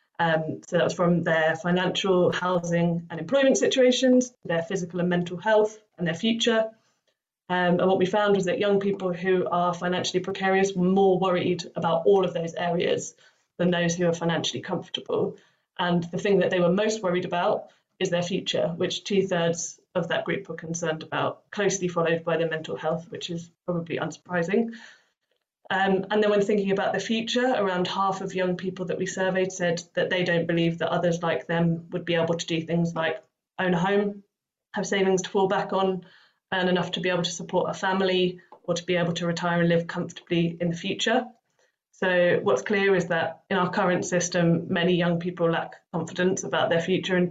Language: English